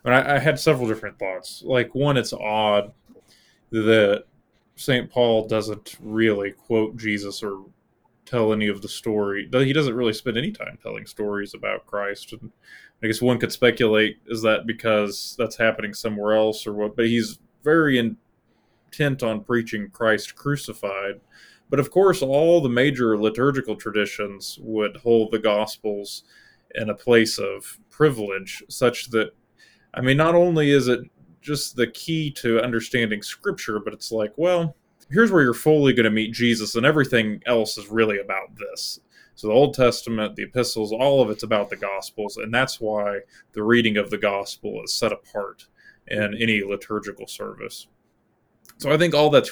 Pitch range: 105-130 Hz